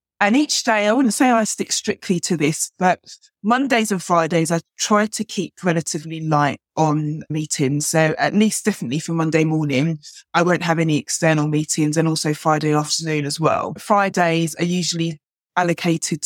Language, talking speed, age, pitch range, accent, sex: English, 170 wpm, 20-39, 165-195 Hz, British, female